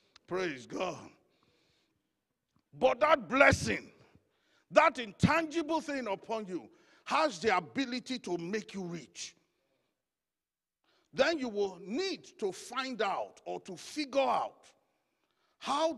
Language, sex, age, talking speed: English, male, 50-69, 110 wpm